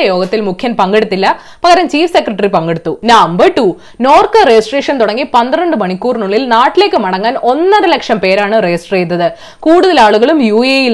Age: 20-39